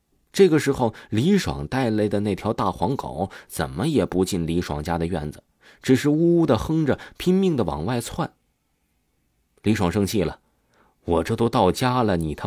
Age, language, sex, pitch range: 20-39, Chinese, male, 80-125 Hz